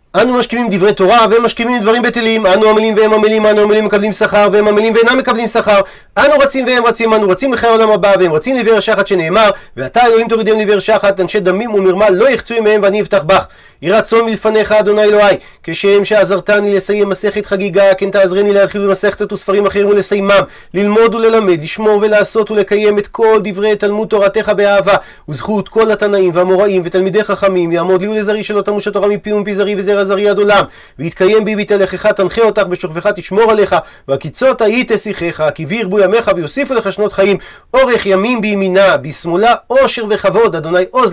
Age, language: 30-49, Hebrew